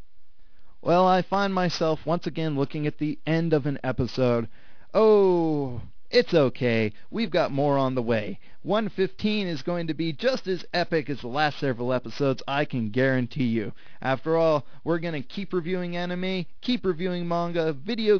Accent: American